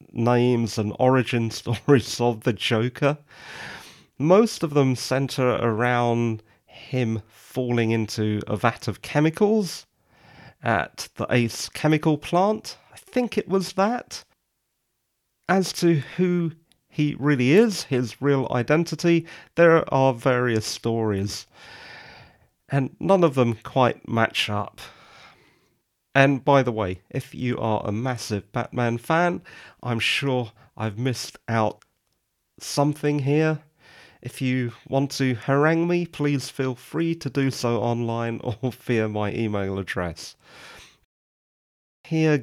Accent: British